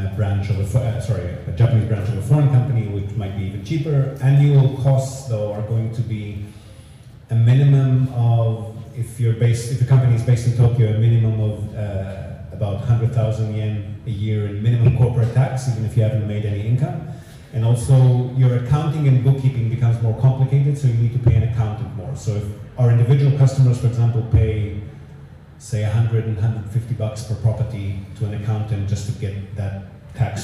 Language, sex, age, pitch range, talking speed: English, male, 30-49, 105-125 Hz, 190 wpm